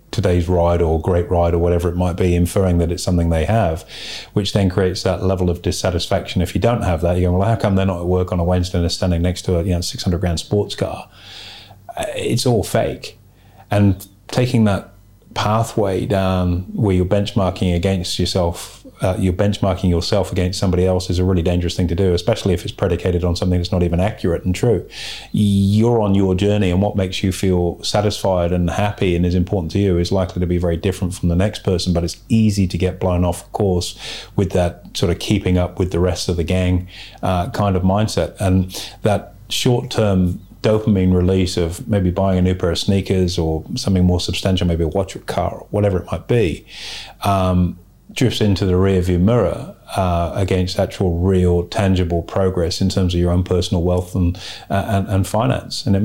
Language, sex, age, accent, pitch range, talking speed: English, male, 30-49, British, 90-100 Hz, 205 wpm